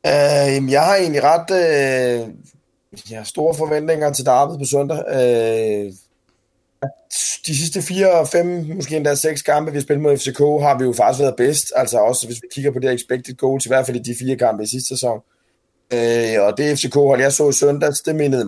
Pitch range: 125-150 Hz